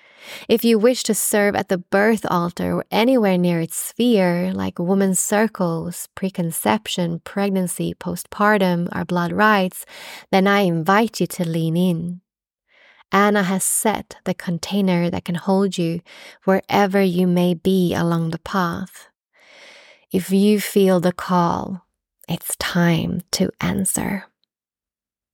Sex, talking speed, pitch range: female, 130 wpm, 175-205 Hz